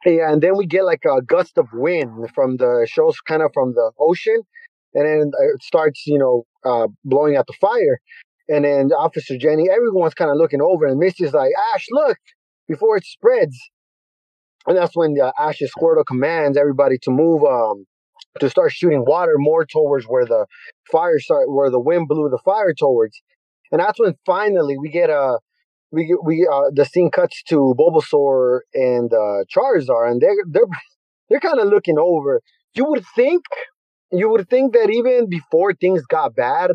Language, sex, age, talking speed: English, male, 30-49, 185 wpm